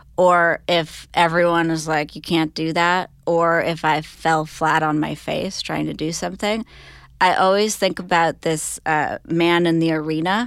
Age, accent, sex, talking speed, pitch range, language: 30-49, American, female, 180 wpm, 155-180 Hz, English